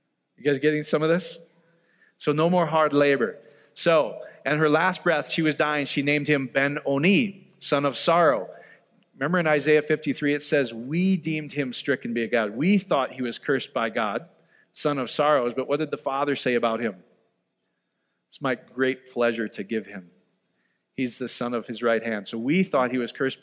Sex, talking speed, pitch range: male, 195 wpm, 130-160 Hz